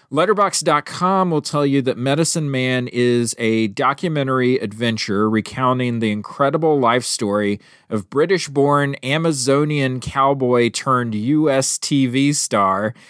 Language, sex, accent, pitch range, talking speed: English, male, American, 115-145 Hz, 100 wpm